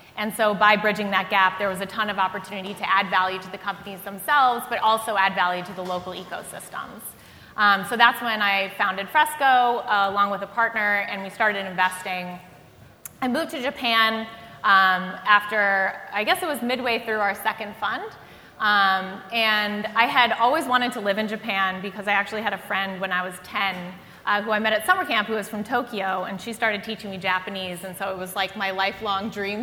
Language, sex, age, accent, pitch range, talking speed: English, female, 20-39, American, 195-225 Hz, 210 wpm